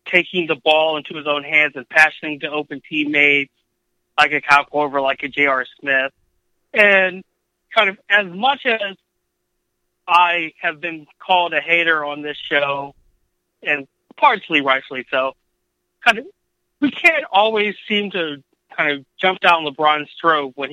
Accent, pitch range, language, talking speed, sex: American, 145-180 Hz, English, 155 wpm, male